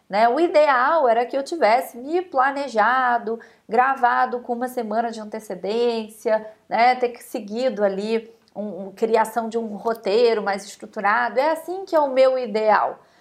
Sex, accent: female, Brazilian